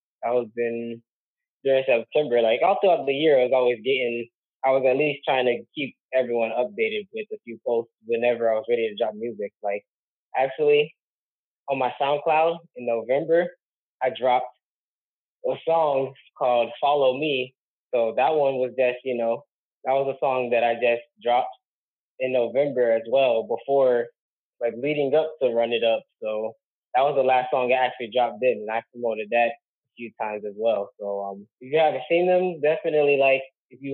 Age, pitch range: 10-29, 115-140 Hz